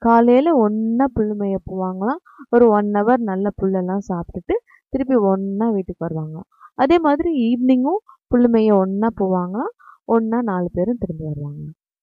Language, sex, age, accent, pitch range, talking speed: English, female, 20-39, Indian, 175-245 Hz, 125 wpm